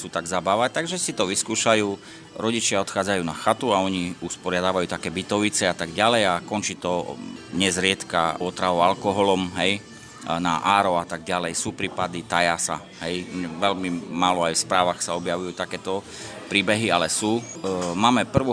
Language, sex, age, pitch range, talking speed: Slovak, male, 30-49, 90-110 Hz, 150 wpm